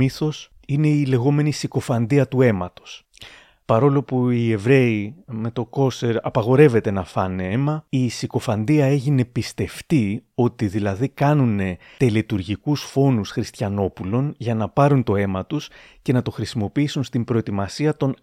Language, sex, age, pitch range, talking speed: Greek, male, 30-49, 110-140 Hz, 130 wpm